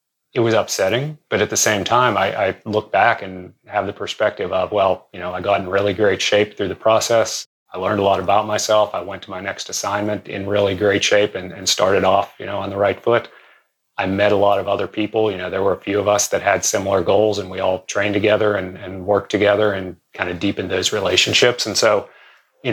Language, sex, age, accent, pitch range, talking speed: English, male, 30-49, American, 95-105 Hz, 245 wpm